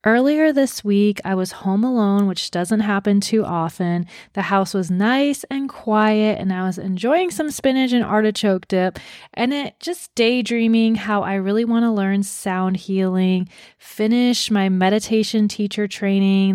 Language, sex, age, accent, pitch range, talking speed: English, female, 20-39, American, 185-225 Hz, 160 wpm